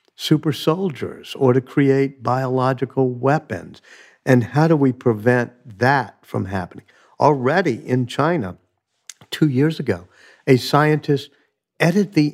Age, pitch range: 50-69, 115-150 Hz